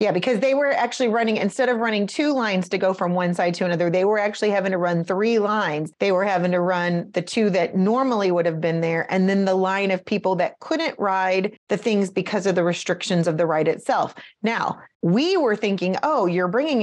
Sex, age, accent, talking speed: female, 30-49, American, 230 wpm